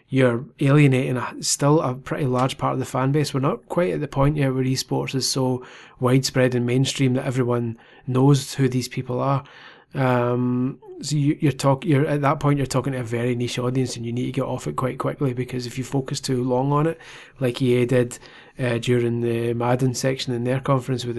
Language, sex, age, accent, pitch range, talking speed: English, male, 20-39, British, 125-140 Hz, 220 wpm